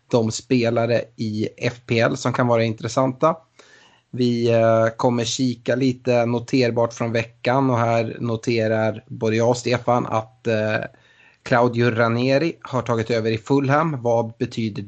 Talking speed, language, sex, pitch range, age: 130 wpm, Swedish, male, 115-135 Hz, 30-49